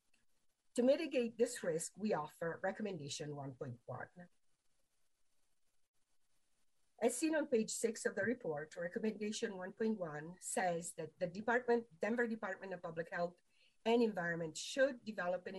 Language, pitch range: English, 165-230 Hz